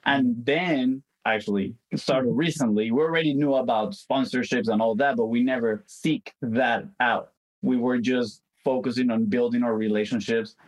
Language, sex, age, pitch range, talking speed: English, male, 20-39, 105-140 Hz, 150 wpm